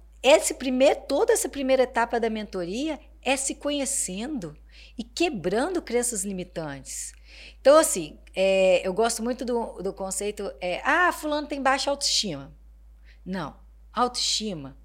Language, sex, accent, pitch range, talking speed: Portuguese, female, Brazilian, 180-250 Hz, 130 wpm